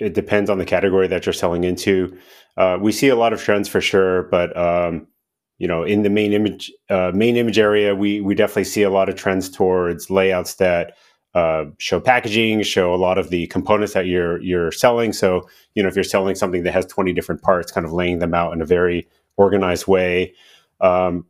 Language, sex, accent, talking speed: English, male, American, 215 wpm